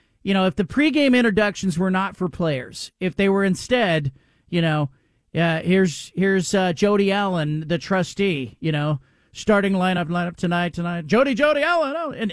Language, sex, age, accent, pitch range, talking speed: English, male, 40-59, American, 190-275 Hz, 175 wpm